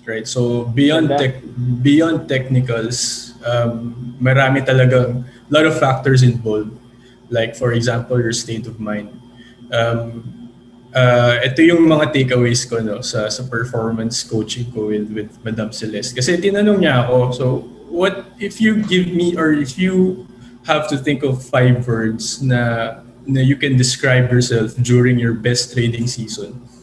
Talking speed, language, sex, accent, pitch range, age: 150 wpm, English, male, Filipino, 120-140 Hz, 20-39